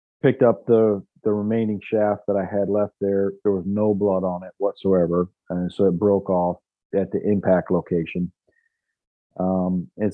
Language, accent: English, American